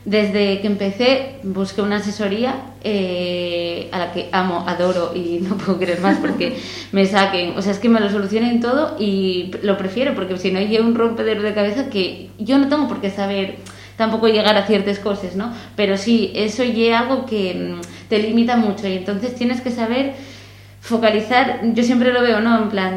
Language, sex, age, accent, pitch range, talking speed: Spanish, female, 20-39, Spanish, 185-225 Hz, 195 wpm